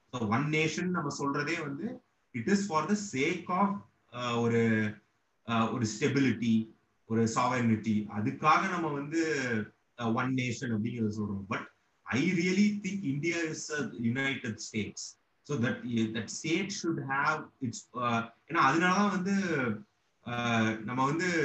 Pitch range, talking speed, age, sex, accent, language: 110-155 Hz, 135 wpm, 30-49, male, native, Tamil